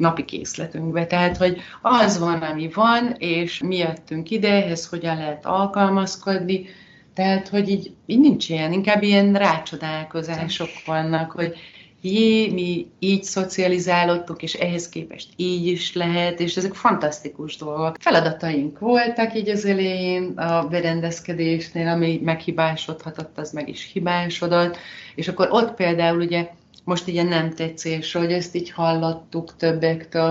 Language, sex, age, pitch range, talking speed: Hungarian, female, 30-49, 160-190 Hz, 135 wpm